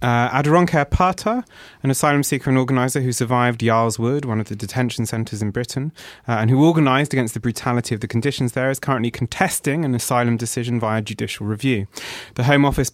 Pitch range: 115-135 Hz